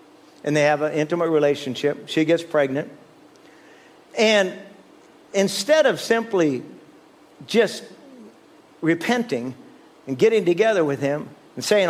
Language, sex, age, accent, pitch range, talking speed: English, male, 50-69, American, 140-195 Hz, 110 wpm